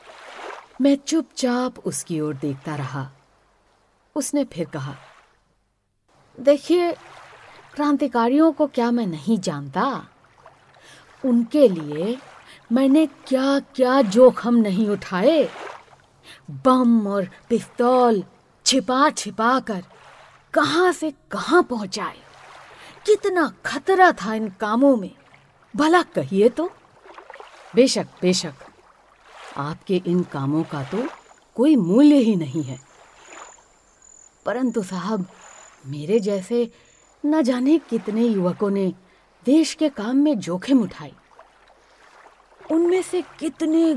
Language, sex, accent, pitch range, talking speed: Hindi, female, native, 195-285 Hz, 100 wpm